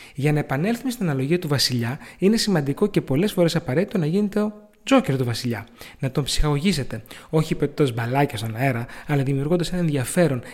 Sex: male